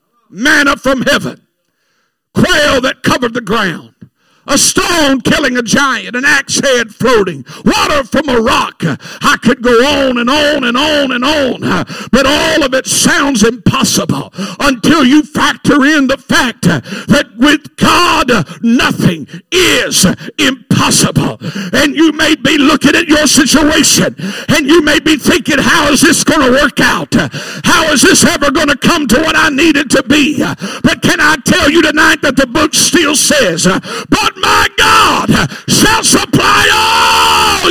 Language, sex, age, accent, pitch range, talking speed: English, male, 50-69, American, 245-320 Hz, 160 wpm